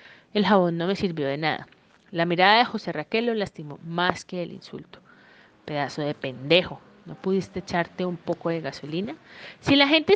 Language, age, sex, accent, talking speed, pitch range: Spanish, 30-49, female, Colombian, 185 wpm, 165-210 Hz